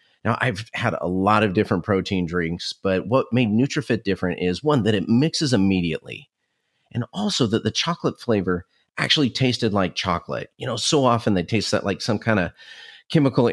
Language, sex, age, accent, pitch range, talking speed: English, male, 40-59, American, 90-120 Hz, 185 wpm